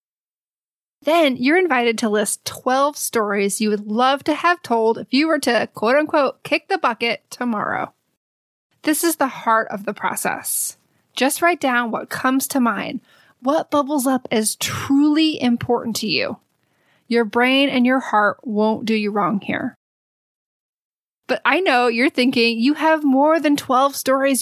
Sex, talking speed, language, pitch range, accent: female, 160 wpm, English, 220-280 Hz, American